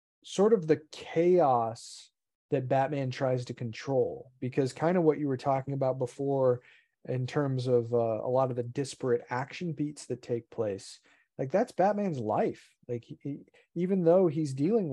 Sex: male